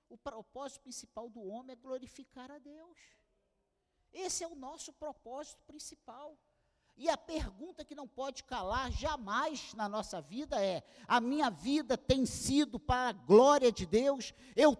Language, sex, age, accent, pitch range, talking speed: Portuguese, male, 50-69, Brazilian, 185-280 Hz, 155 wpm